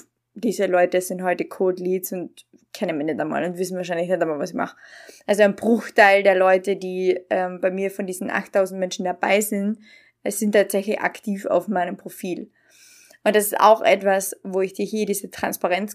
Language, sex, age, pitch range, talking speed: German, female, 20-39, 195-245 Hz, 190 wpm